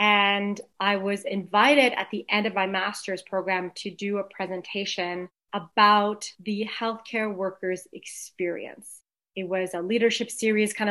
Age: 30-49